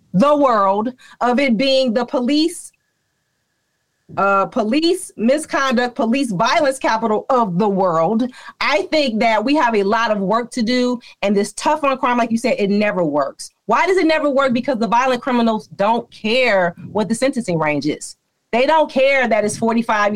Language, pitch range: English, 180-255 Hz